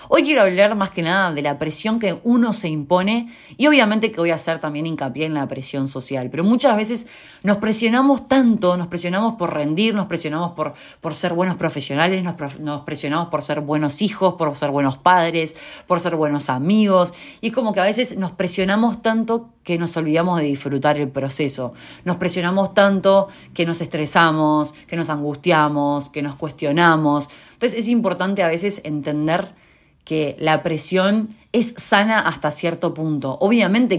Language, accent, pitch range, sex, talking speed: Spanish, Argentinian, 150-195 Hz, female, 175 wpm